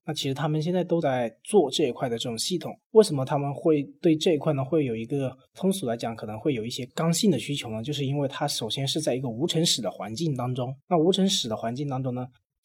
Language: Chinese